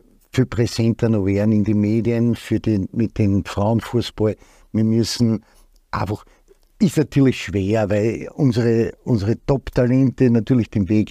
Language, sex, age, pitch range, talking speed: German, male, 60-79, 105-130 Hz, 135 wpm